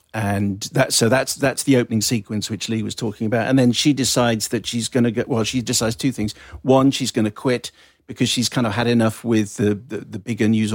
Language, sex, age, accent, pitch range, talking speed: English, male, 50-69, British, 105-120 Hz, 245 wpm